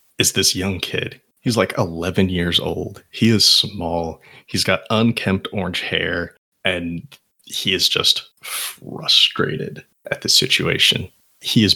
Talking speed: 140 wpm